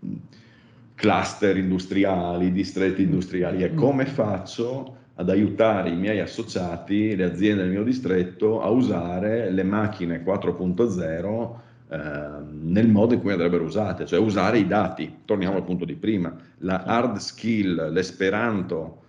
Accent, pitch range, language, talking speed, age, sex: native, 85-105 Hz, Italian, 130 wpm, 50-69, male